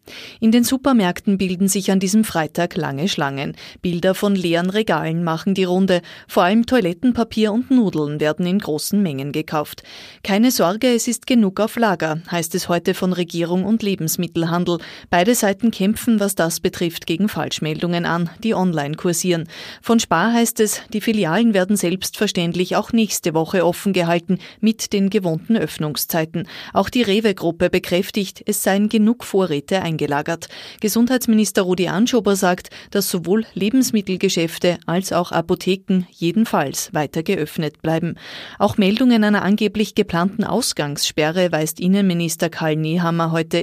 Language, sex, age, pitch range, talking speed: German, female, 30-49, 170-215 Hz, 145 wpm